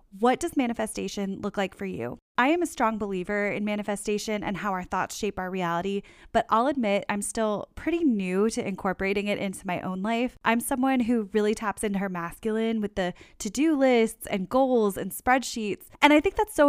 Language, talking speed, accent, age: English, 200 wpm, American, 10-29